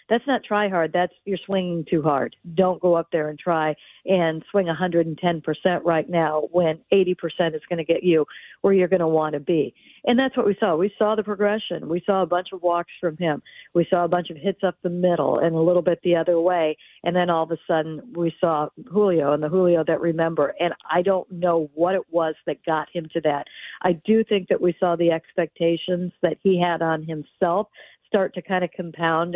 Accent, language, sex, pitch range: American, English, female, 165-185 Hz